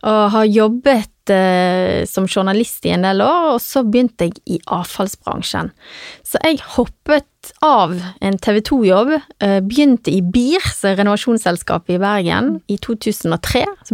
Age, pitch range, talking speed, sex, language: 20-39, 185-240 Hz, 110 wpm, female, English